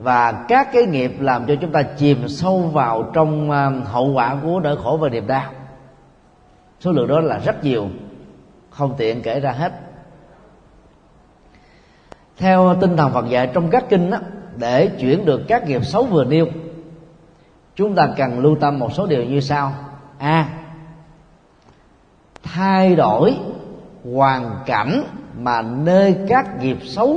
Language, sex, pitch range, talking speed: Vietnamese, male, 135-175 Hz, 150 wpm